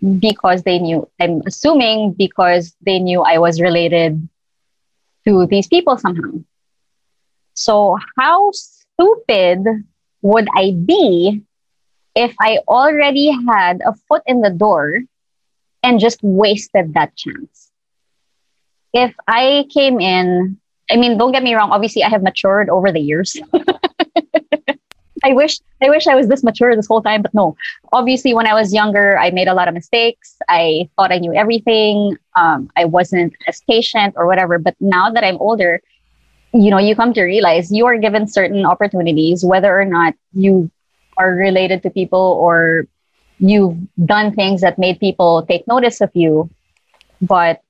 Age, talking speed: 20-39, 155 wpm